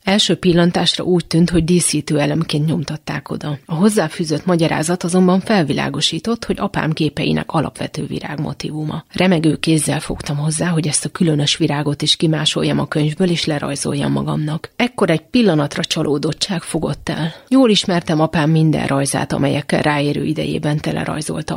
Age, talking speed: 30-49, 140 wpm